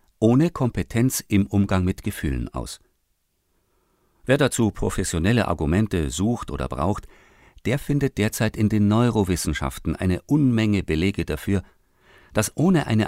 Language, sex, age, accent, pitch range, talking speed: German, male, 50-69, German, 85-120 Hz, 125 wpm